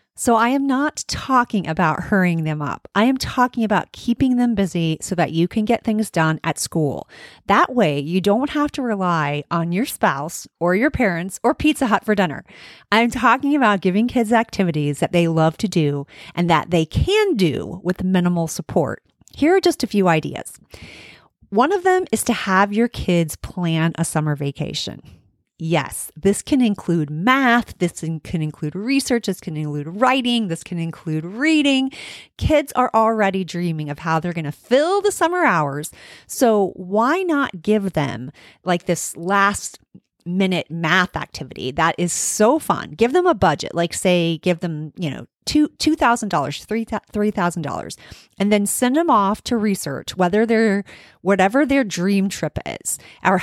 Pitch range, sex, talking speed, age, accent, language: 165-240 Hz, female, 175 wpm, 40-59, American, English